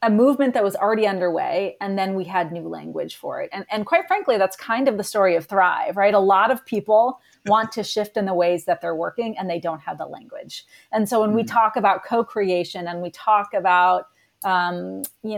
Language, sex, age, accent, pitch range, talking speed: English, female, 30-49, American, 180-220 Hz, 225 wpm